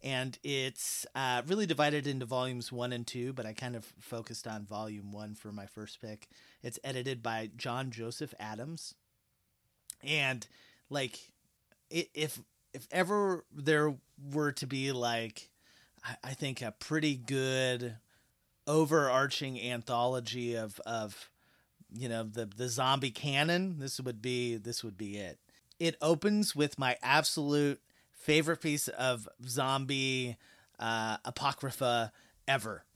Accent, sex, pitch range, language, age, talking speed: American, male, 115-135 Hz, English, 30-49, 130 wpm